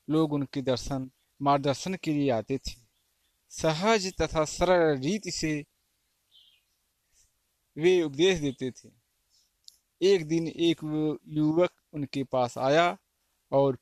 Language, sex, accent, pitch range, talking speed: Hindi, male, native, 125-165 Hz, 115 wpm